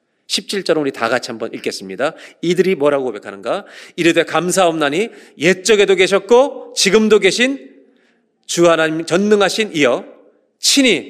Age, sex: 40-59, male